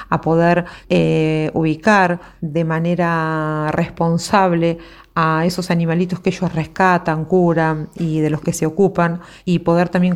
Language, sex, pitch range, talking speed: Spanish, female, 160-185 Hz, 135 wpm